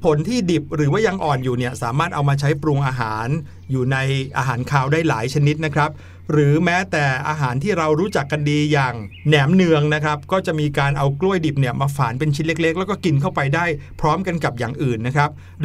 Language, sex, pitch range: Thai, male, 140-180 Hz